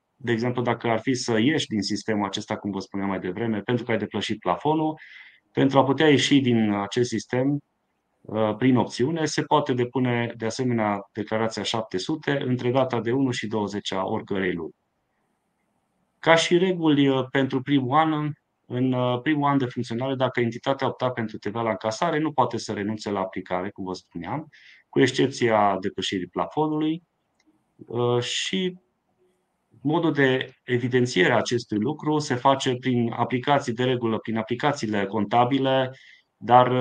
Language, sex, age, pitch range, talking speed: Romanian, male, 20-39, 110-130 Hz, 145 wpm